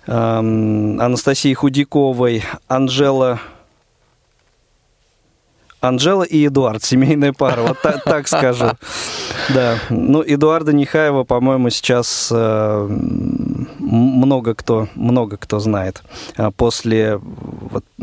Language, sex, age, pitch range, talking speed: Russian, male, 20-39, 115-140 Hz, 85 wpm